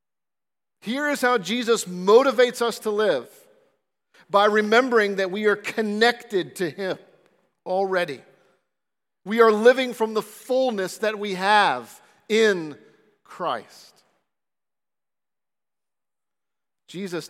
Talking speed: 100 wpm